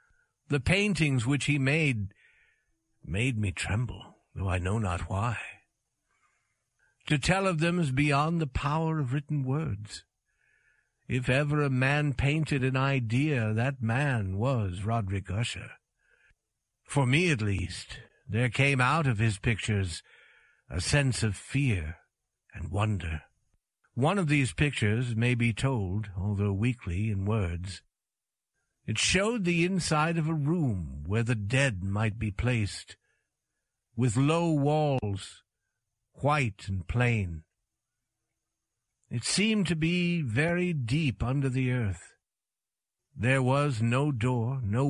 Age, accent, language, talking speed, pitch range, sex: 60-79, American, English, 130 wpm, 105-145 Hz, male